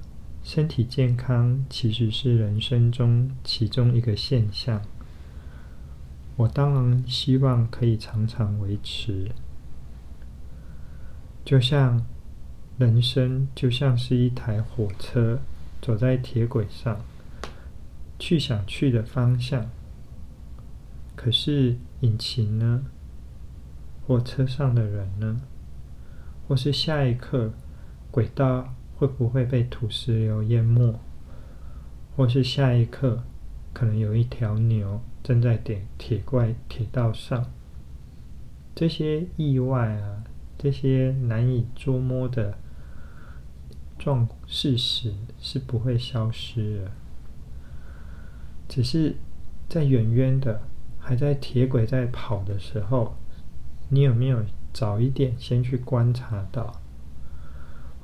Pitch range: 75-125 Hz